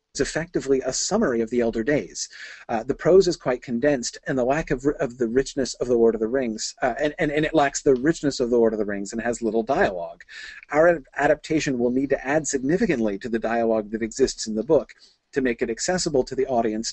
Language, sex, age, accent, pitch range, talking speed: English, male, 40-59, American, 115-150 Hz, 240 wpm